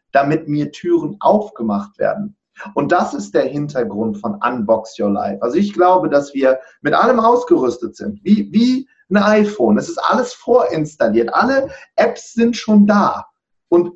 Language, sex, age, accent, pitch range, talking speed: German, male, 40-59, German, 145-215 Hz, 160 wpm